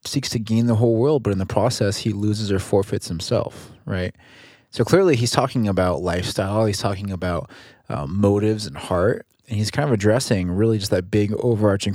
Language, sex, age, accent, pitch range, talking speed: English, male, 20-39, American, 100-115 Hz, 195 wpm